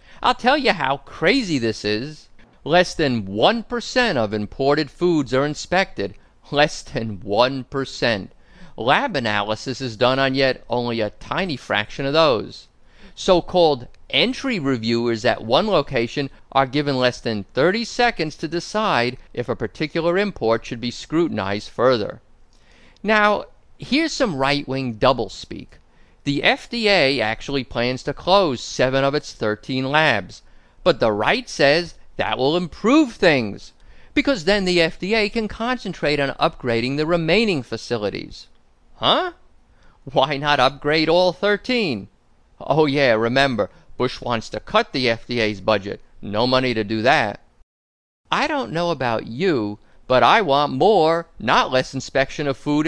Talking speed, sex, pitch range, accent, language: 140 wpm, male, 120-175 Hz, American, English